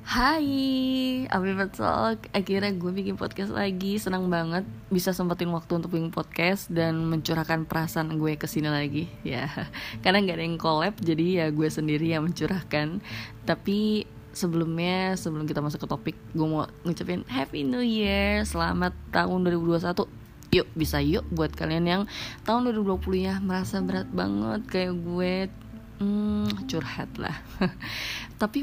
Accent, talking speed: native, 140 wpm